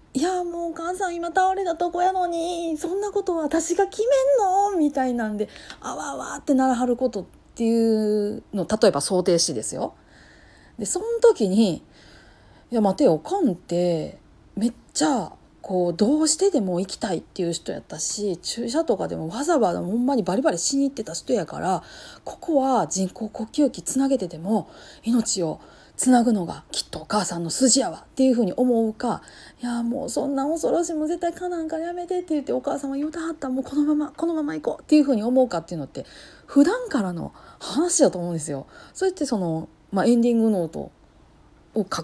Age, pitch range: 40-59, 190-315 Hz